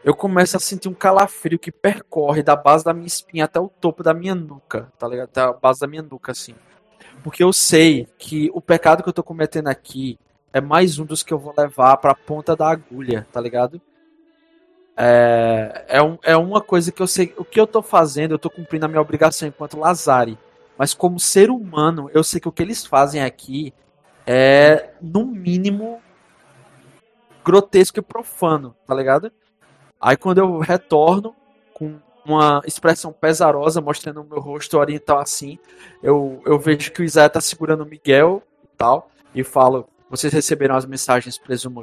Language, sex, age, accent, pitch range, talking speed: Portuguese, male, 20-39, Brazilian, 135-180 Hz, 180 wpm